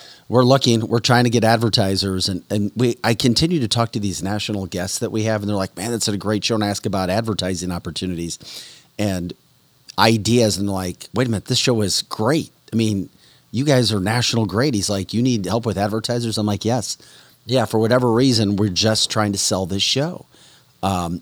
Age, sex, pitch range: 40-59, male, 95-115 Hz